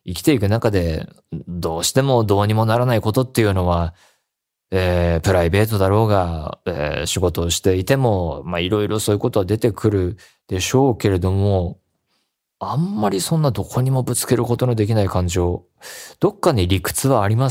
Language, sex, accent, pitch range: Japanese, male, native, 90-125 Hz